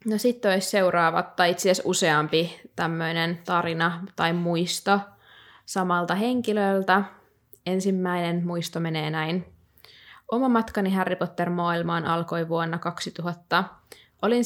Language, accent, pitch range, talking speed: Finnish, native, 170-195 Hz, 105 wpm